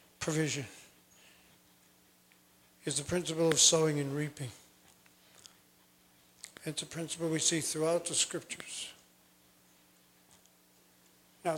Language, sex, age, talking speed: English, male, 50-69, 90 wpm